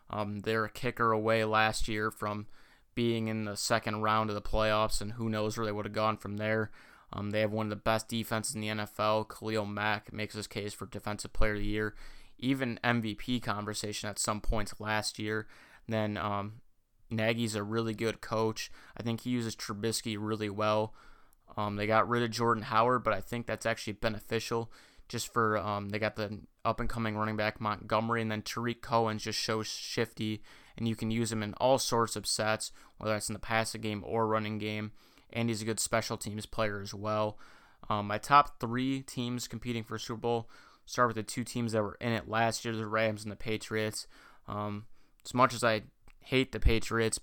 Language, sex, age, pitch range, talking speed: English, male, 20-39, 105-115 Hz, 205 wpm